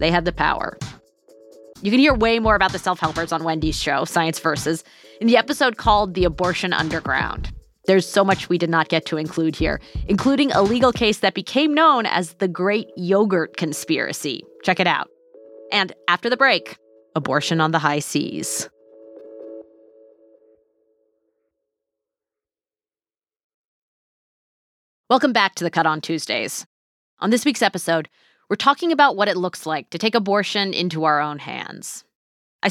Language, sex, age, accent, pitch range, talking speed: English, female, 30-49, American, 150-205 Hz, 155 wpm